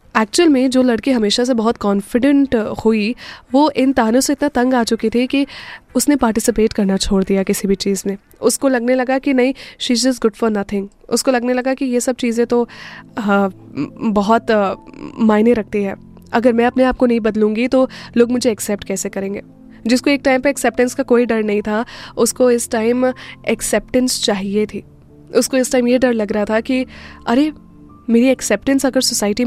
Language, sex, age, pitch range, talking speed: Hindi, female, 10-29, 215-255 Hz, 190 wpm